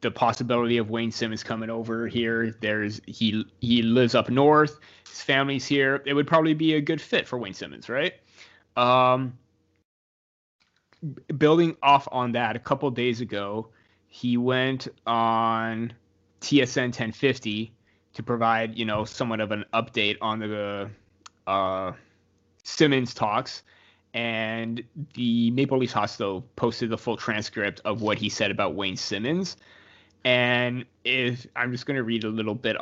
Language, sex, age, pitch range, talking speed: English, male, 20-39, 110-130 Hz, 150 wpm